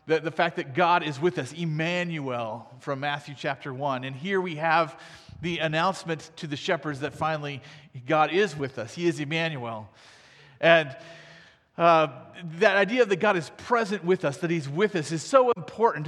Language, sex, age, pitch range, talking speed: English, male, 40-59, 145-185 Hz, 175 wpm